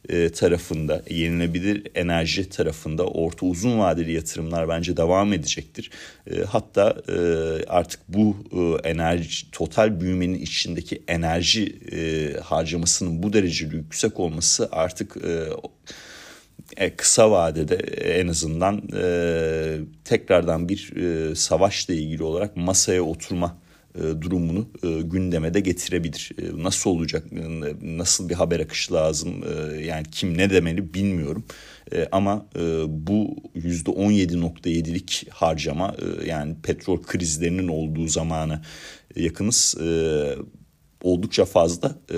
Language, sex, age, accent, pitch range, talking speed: Turkish, male, 40-59, native, 80-95 Hz, 90 wpm